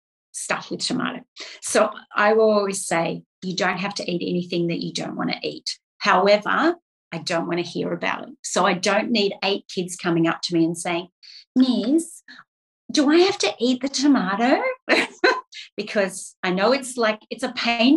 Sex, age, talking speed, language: female, 40-59, 185 wpm, English